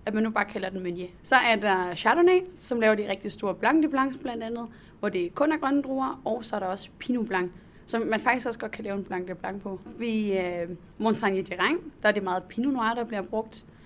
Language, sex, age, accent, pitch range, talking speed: Danish, female, 20-39, native, 190-235 Hz, 250 wpm